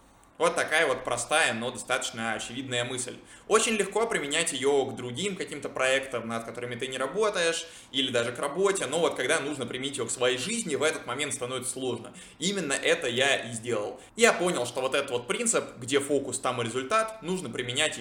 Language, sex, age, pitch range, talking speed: Russian, male, 20-39, 120-150 Hz, 195 wpm